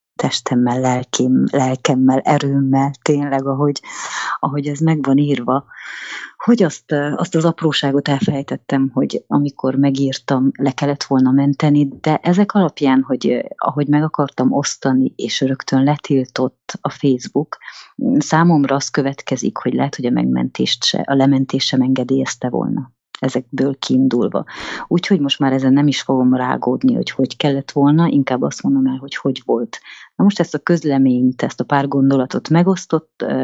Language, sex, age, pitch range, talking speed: English, female, 30-49, 130-145 Hz, 145 wpm